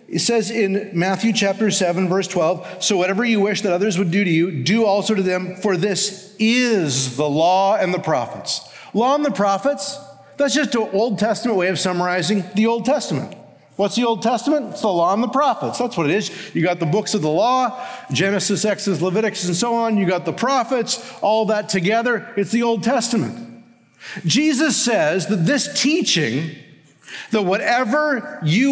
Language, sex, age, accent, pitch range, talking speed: English, male, 50-69, American, 195-255 Hz, 190 wpm